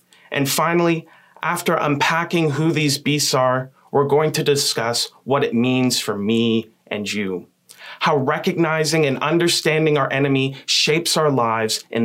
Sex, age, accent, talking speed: male, 30-49, American, 145 wpm